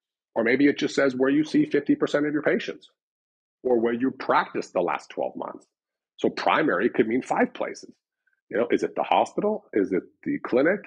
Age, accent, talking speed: 40-59, American, 200 wpm